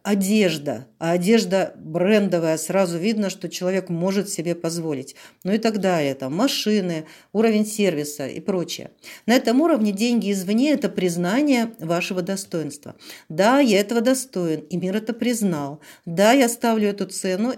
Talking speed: 145 wpm